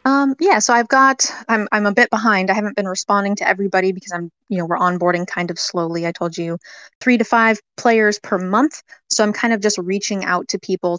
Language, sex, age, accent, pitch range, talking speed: English, female, 20-39, American, 180-220 Hz, 235 wpm